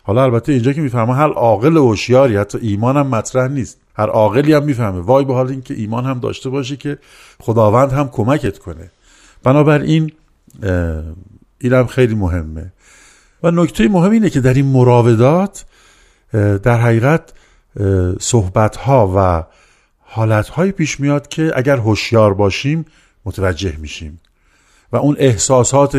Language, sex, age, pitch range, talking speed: Persian, male, 50-69, 95-130 Hz, 140 wpm